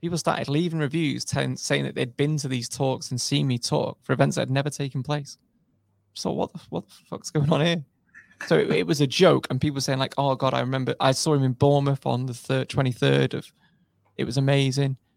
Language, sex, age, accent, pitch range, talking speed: English, male, 20-39, British, 125-150 Hz, 220 wpm